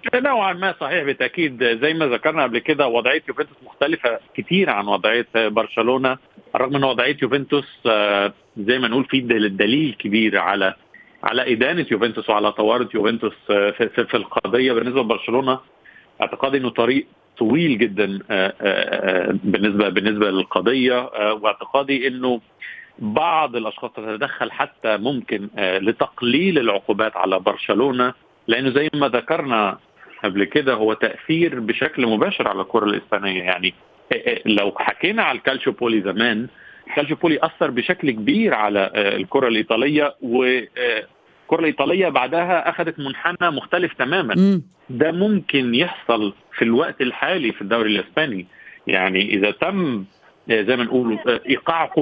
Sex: male